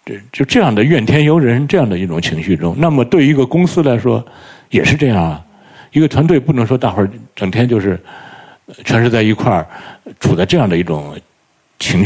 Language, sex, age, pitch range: Chinese, male, 60-79, 90-135 Hz